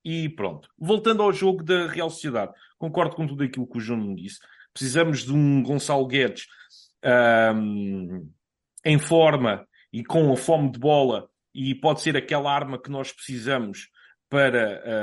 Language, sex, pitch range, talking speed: Portuguese, male, 115-160 Hz, 160 wpm